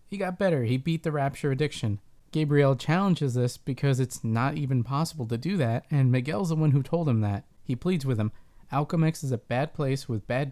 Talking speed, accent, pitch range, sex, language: 215 wpm, American, 125-160 Hz, male, English